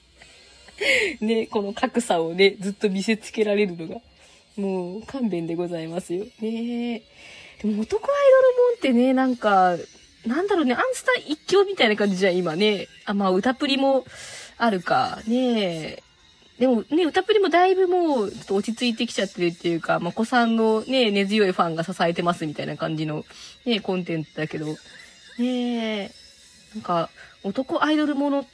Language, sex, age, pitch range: Japanese, female, 20-39, 190-255 Hz